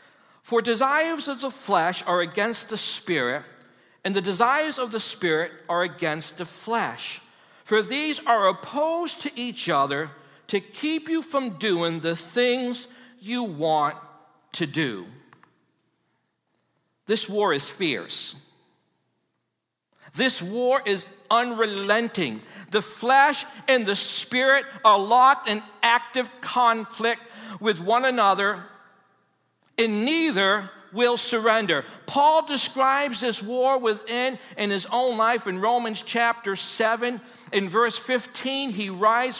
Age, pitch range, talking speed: 60-79, 200-260 Hz, 120 wpm